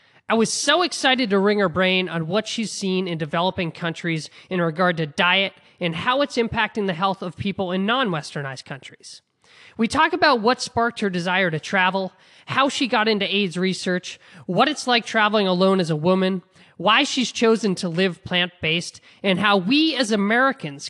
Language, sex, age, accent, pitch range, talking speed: English, male, 20-39, American, 175-230 Hz, 185 wpm